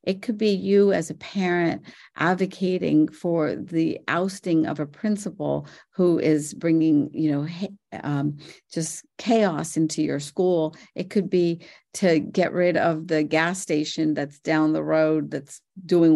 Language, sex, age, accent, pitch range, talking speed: English, female, 50-69, American, 155-195 Hz, 150 wpm